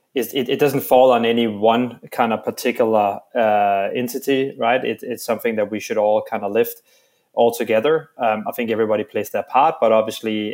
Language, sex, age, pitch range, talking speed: English, male, 20-39, 105-120 Hz, 195 wpm